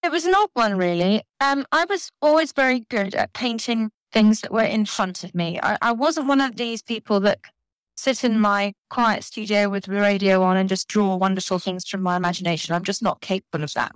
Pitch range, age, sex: 200-245 Hz, 30-49, female